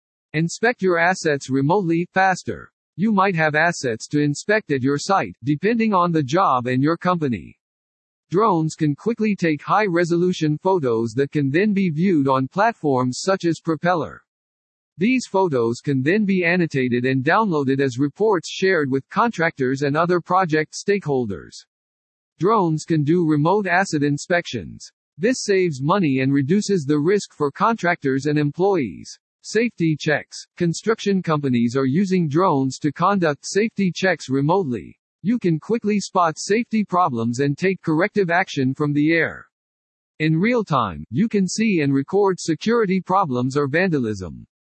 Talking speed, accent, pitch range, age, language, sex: 145 wpm, American, 135-190 Hz, 50-69, English, male